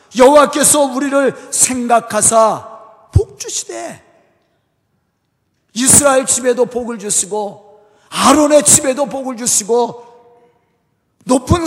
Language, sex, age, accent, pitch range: Korean, male, 50-69, native, 215-295 Hz